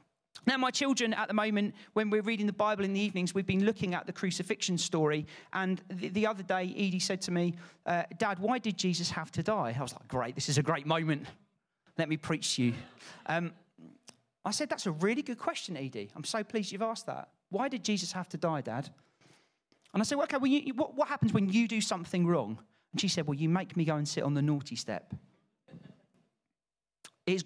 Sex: male